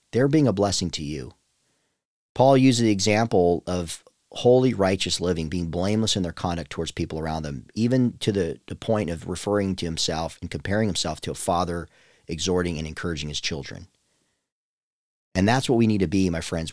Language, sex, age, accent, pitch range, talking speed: English, male, 40-59, American, 85-110 Hz, 185 wpm